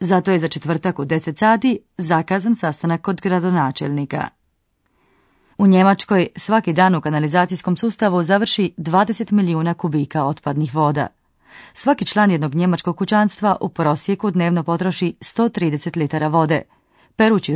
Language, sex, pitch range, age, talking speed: Croatian, female, 160-200 Hz, 30-49, 125 wpm